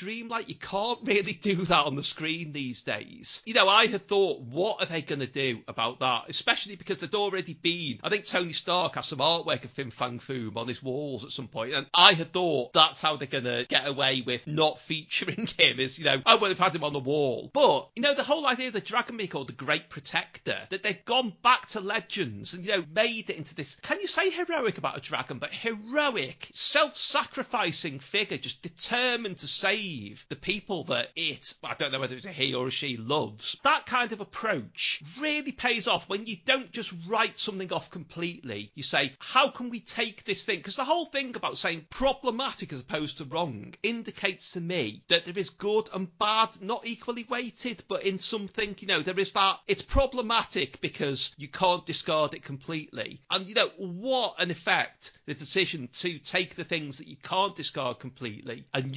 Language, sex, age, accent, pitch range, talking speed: English, male, 40-59, British, 150-225 Hz, 215 wpm